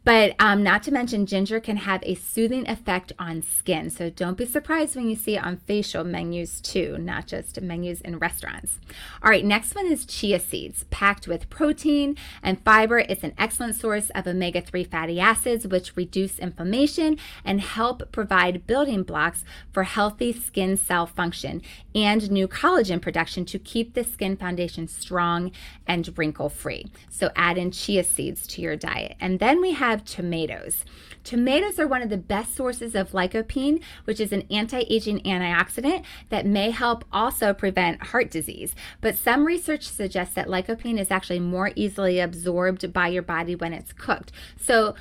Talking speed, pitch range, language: 170 wpm, 180-235 Hz, English